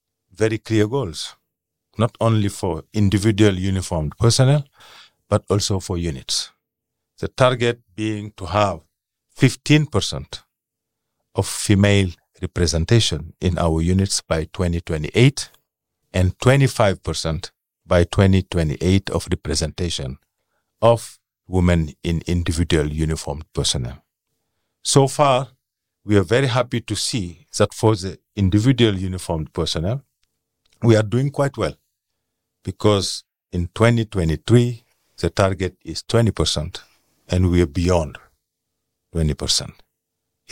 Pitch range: 85-110 Hz